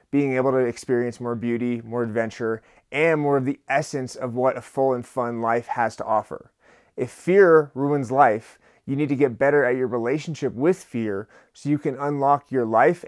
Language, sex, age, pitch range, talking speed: English, male, 30-49, 120-155 Hz, 195 wpm